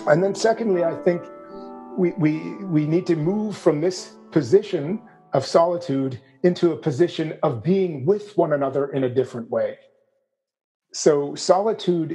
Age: 40-59